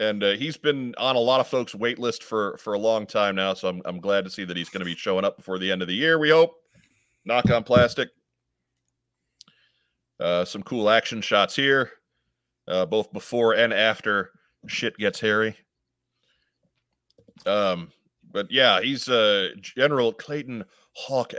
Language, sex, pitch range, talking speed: English, male, 95-130 Hz, 175 wpm